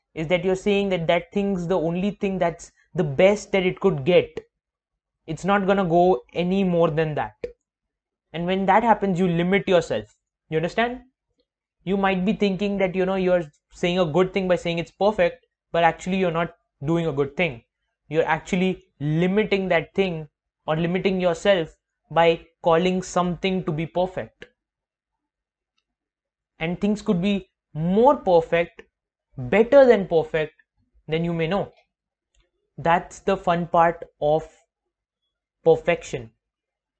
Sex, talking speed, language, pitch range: male, 150 wpm, English, 170-200 Hz